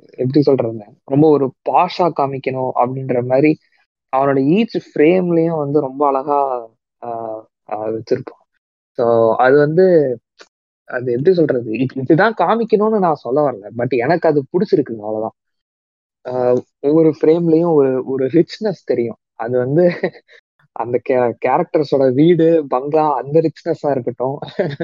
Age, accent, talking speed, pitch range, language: 20-39, native, 115 wpm, 125-160 Hz, Tamil